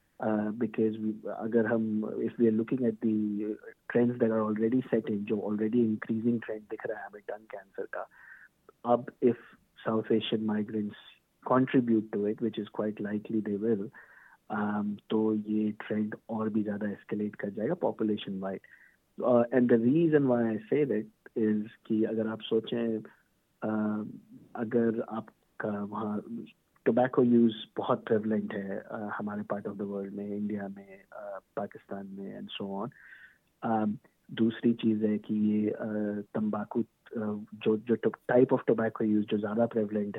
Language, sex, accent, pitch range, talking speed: Hindi, male, native, 105-115 Hz, 130 wpm